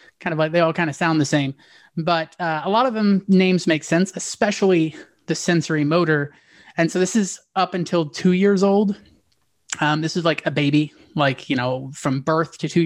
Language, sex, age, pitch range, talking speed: English, male, 30-49, 145-185 Hz, 210 wpm